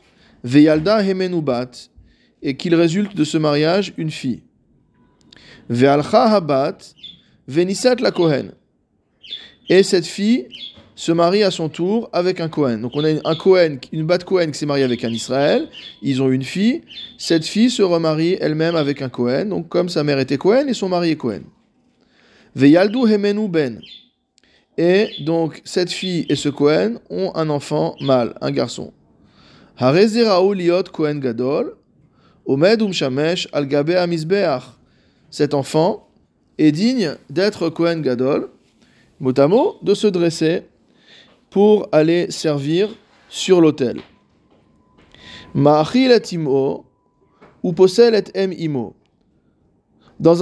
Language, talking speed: French, 105 wpm